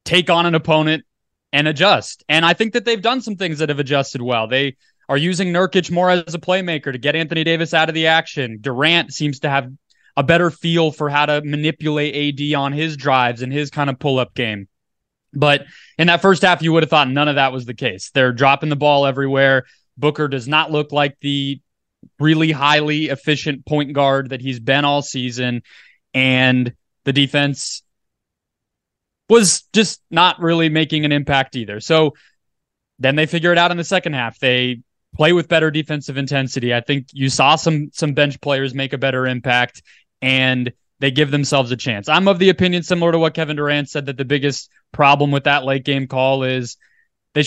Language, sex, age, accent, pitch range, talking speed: English, male, 20-39, American, 135-165 Hz, 200 wpm